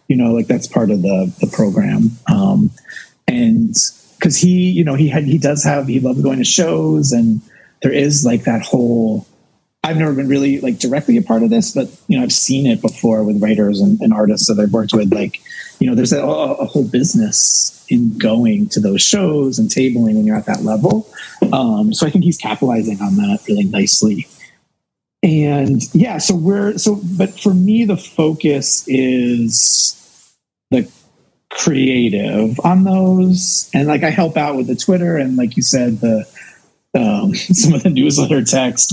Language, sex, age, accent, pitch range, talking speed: English, male, 30-49, American, 120-195 Hz, 185 wpm